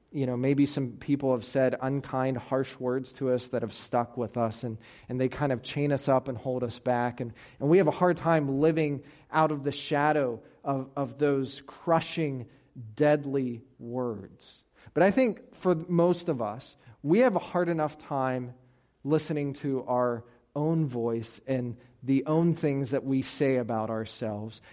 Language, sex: English, male